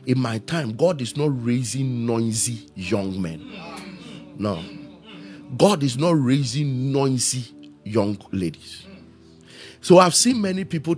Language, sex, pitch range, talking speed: English, male, 115-155 Hz, 125 wpm